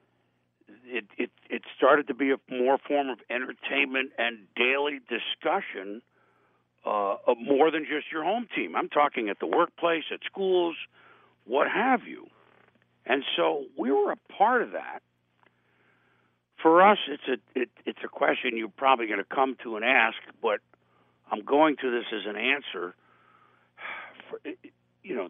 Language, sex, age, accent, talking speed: English, male, 60-79, American, 150 wpm